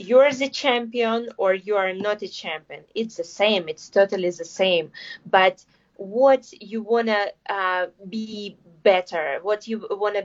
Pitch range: 180-225 Hz